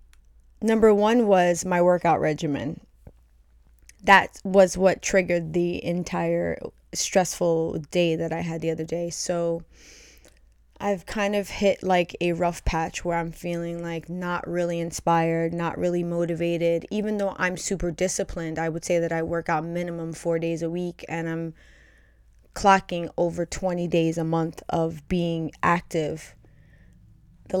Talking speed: 150 wpm